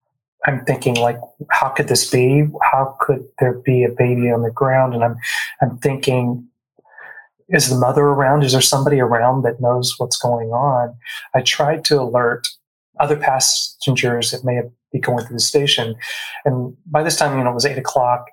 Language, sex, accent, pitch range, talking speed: English, male, American, 120-145 Hz, 185 wpm